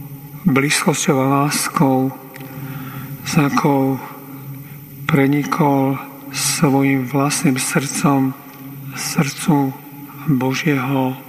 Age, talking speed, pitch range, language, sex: 50-69, 60 wpm, 135-145 Hz, Slovak, male